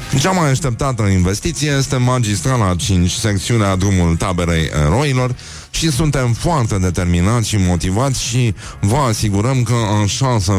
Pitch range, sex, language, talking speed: 95-120 Hz, male, Romanian, 130 wpm